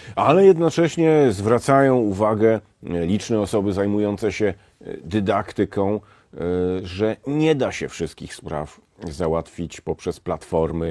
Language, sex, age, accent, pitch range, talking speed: Polish, male, 40-59, native, 90-110 Hz, 100 wpm